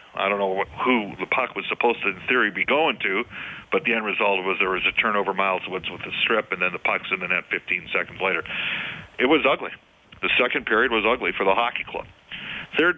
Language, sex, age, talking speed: English, male, 40-59, 235 wpm